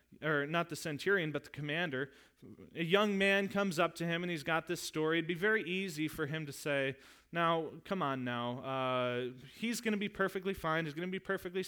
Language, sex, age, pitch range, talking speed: English, male, 30-49, 145-200 Hz, 220 wpm